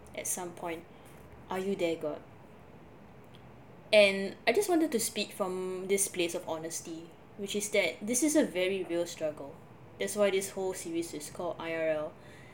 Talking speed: 165 wpm